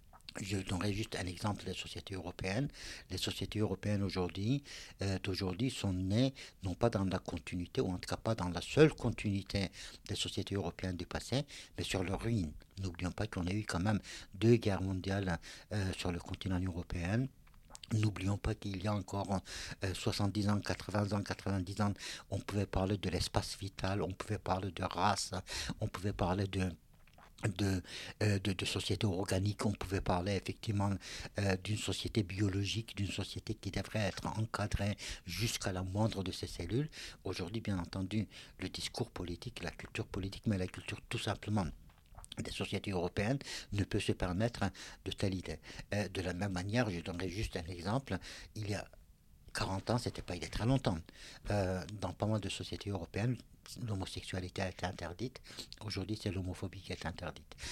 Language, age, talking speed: French, 60-79, 180 wpm